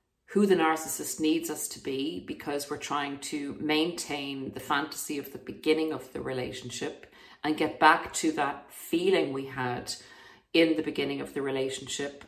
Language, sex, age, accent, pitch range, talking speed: English, female, 40-59, Irish, 135-160 Hz, 165 wpm